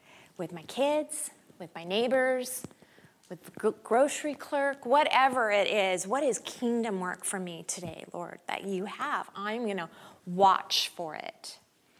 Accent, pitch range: American, 180-245 Hz